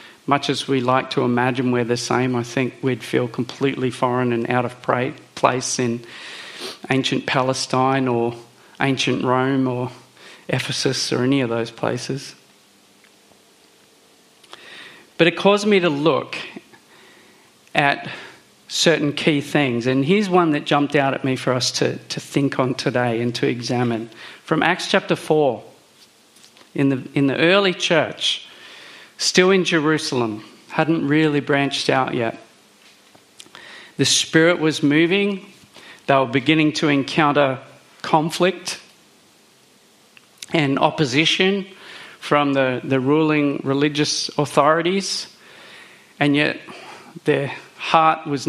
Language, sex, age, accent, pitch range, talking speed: English, male, 40-59, Australian, 130-160 Hz, 125 wpm